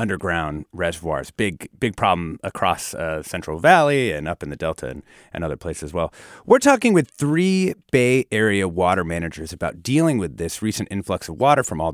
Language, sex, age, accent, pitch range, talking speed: English, male, 30-49, American, 85-145 Hz, 190 wpm